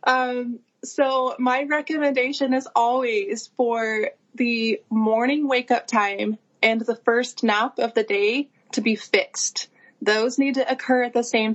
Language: English